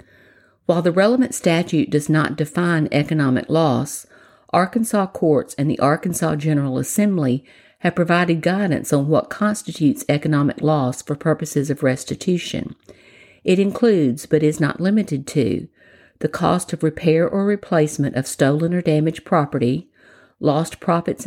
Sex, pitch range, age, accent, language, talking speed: female, 145-175 Hz, 50-69, American, English, 135 wpm